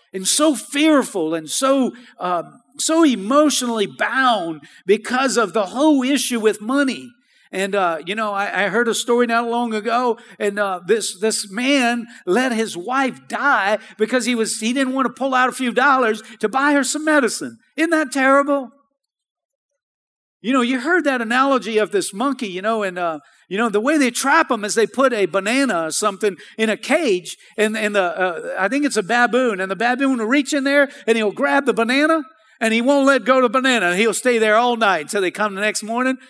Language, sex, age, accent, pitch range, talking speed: English, male, 50-69, American, 205-275 Hz, 210 wpm